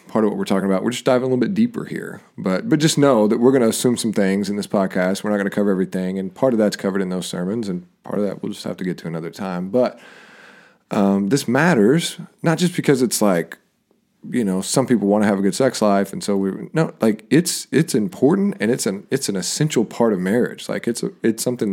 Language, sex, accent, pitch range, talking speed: English, male, American, 95-125 Hz, 265 wpm